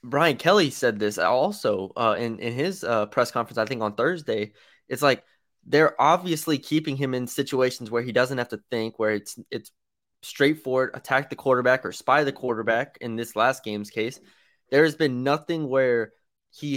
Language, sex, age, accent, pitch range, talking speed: English, male, 20-39, American, 110-135 Hz, 185 wpm